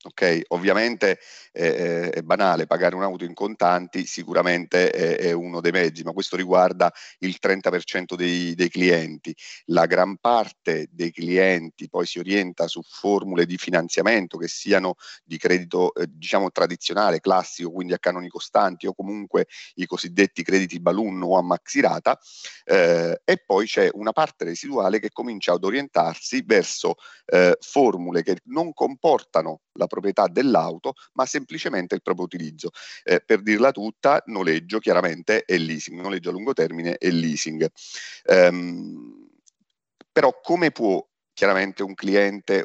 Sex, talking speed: male, 145 wpm